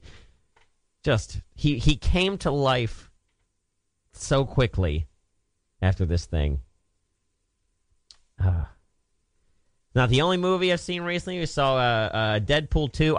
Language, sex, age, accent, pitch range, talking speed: English, male, 40-59, American, 85-125 Hz, 115 wpm